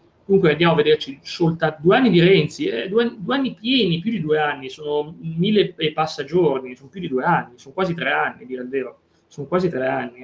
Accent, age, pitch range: native, 30-49, 135-175 Hz